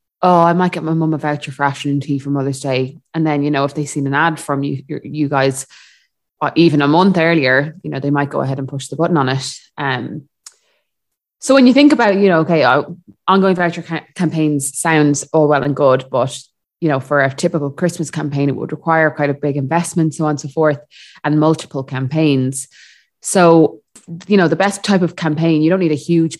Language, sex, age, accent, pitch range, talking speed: English, female, 20-39, Irish, 140-170 Hz, 225 wpm